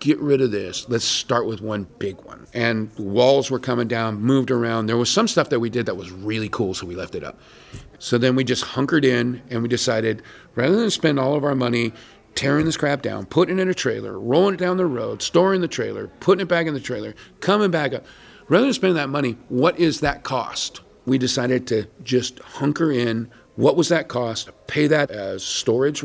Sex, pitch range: male, 120-160 Hz